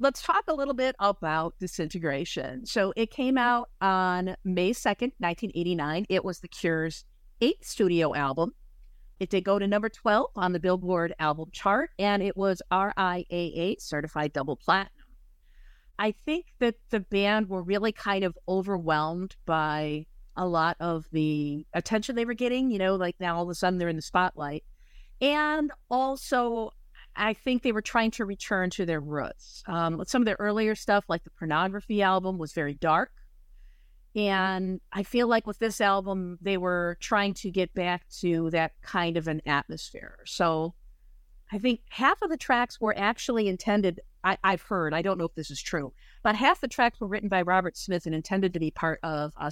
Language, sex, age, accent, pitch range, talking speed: English, female, 50-69, American, 165-215 Hz, 180 wpm